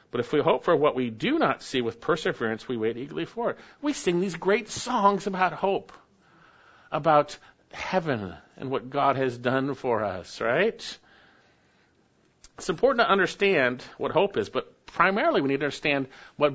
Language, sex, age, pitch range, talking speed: English, male, 50-69, 115-150 Hz, 175 wpm